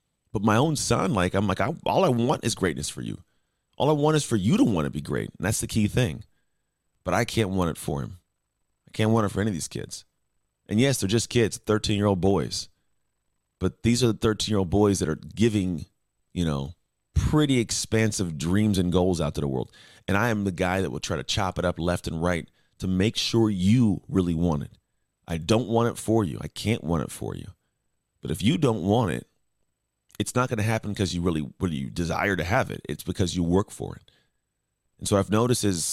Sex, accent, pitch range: male, American, 90-110 Hz